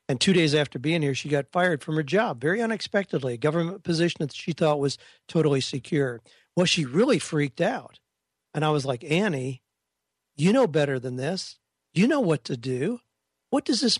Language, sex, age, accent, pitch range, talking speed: English, male, 50-69, American, 140-175 Hz, 195 wpm